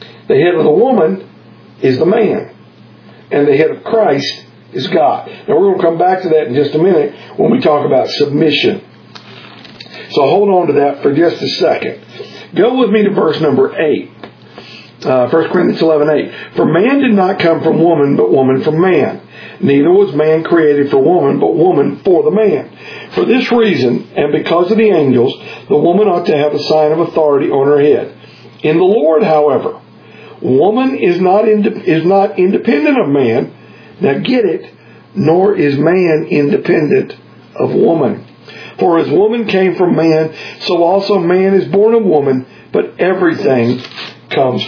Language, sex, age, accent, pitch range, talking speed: English, male, 50-69, American, 155-215 Hz, 180 wpm